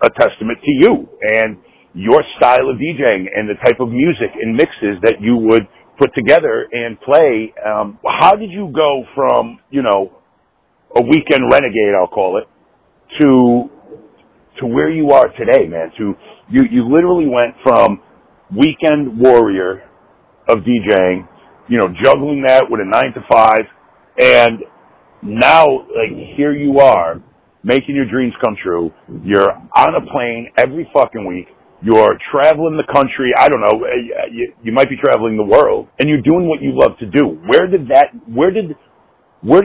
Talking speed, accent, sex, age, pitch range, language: 160 wpm, American, male, 50-69, 110-155 Hz, English